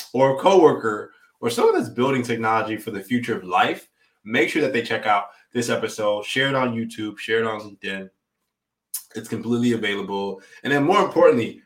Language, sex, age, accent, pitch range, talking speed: English, male, 20-39, American, 105-125 Hz, 185 wpm